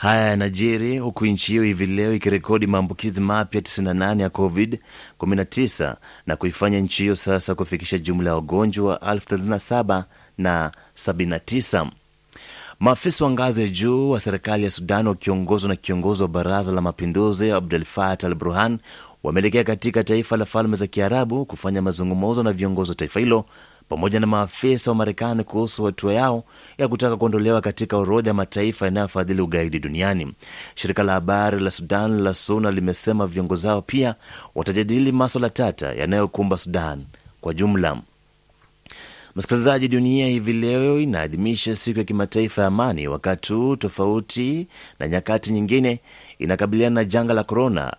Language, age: Swahili, 30-49